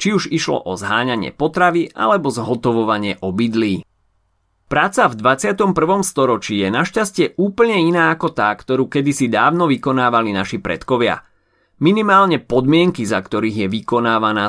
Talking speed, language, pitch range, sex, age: 130 wpm, Slovak, 115-170 Hz, male, 30-49